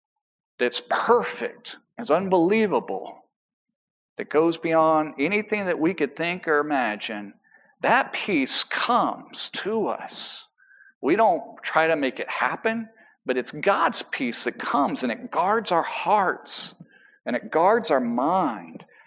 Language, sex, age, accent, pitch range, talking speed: English, male, 50-69, American, 145-230 Hz, 135 wpm